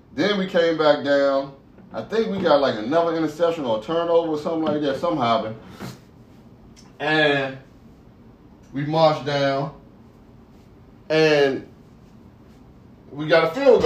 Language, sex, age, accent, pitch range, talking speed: English, male, 30-49, American, 135-170 Hz, 125 wpm